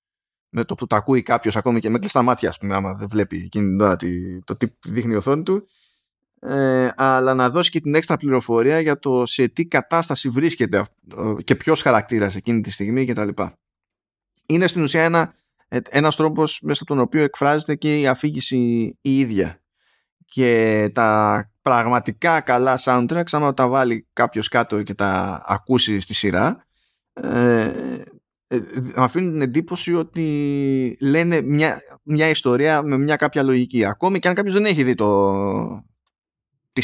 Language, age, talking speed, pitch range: Greek, 20-39, 160 wpm, 115-160 Hz